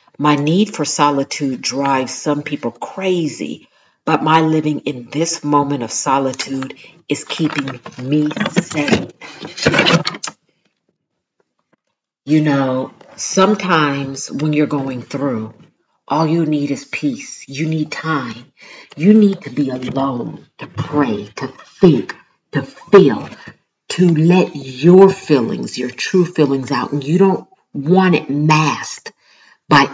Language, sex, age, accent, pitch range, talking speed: English, female, 50-69, American, 145-190 Hz, 120 wpm